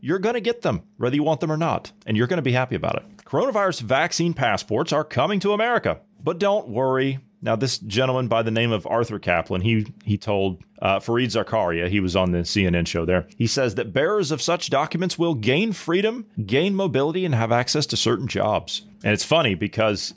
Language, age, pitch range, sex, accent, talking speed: English, 30-49, 105-160 Hz, male, American, 215 wpm